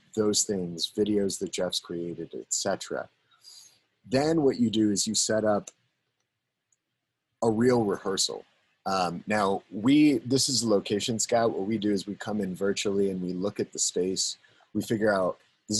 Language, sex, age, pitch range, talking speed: English, male, 30-49, 95-115 Hz, 165 wpm